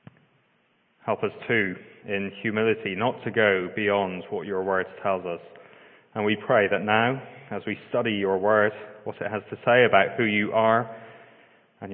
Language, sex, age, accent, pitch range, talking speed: English, male, 30-49, British, 100-130 Hz, 170 wpm